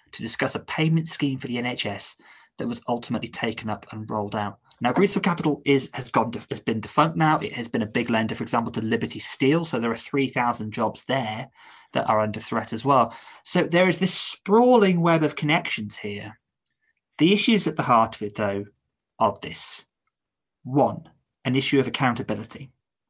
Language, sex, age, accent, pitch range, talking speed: English, male, 20-39, British, 115-160 Hz, 190 wpm